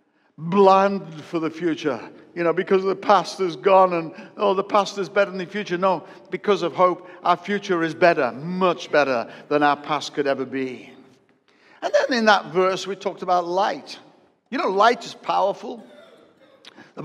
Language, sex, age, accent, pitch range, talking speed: English, male, 60-79, British, 170-205 Hz, 180 wpm